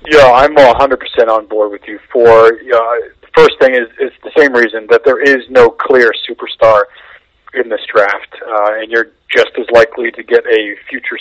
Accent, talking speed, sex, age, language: American, 195 wpm, male, 40-59, English